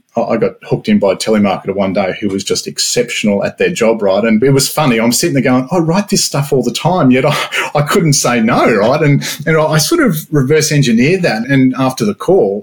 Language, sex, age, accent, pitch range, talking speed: English, male, 30-49, Australian, 115-155 Hz, 250 wpm